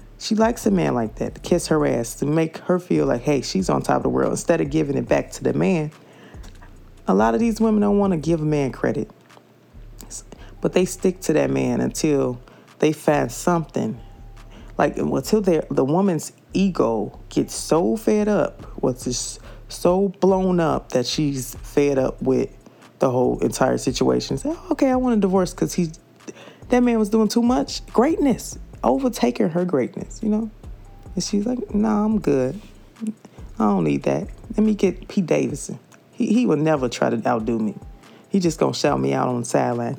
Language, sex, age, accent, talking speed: English, female, 20-39, American, 195 wpm